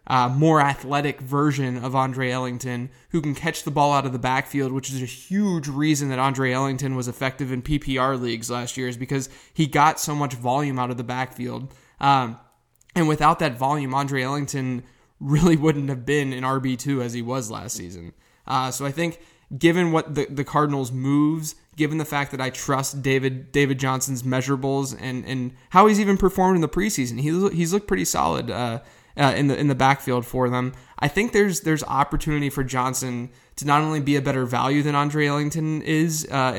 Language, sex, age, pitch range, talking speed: English, male, 10-29, 130-155 Hz, 200 wpm